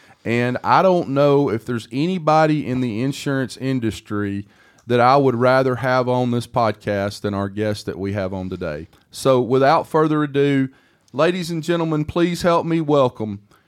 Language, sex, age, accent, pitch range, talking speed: English, male, 30-49, American, 135-190 Hz, 165 wpm